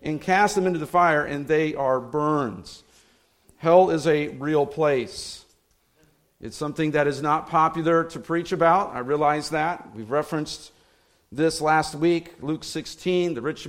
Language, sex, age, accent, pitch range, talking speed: English, male, 50-69, American, 140-170 Hz, 160 wpm